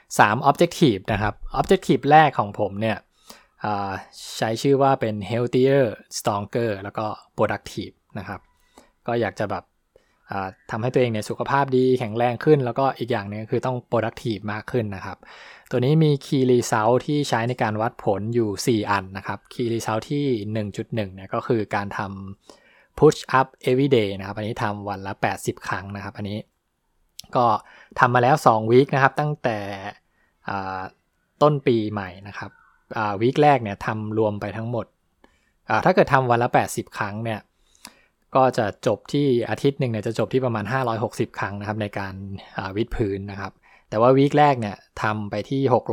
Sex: male